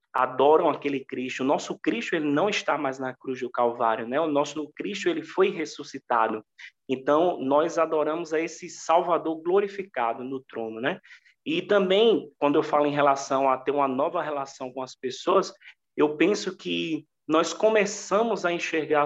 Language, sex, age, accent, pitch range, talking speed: Portuguese, male, 20-39, Brazilian, 135-175 Hz, 165 wpm